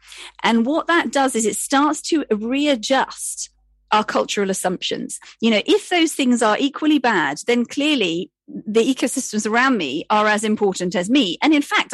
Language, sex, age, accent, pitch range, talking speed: English, female, 40-59, British, 195-275 Hz, 170 wpm